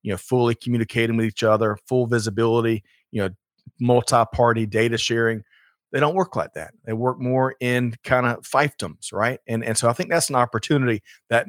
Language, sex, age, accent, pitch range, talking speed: English, male, 40-59, American, 110-125 Hz, 190 wpm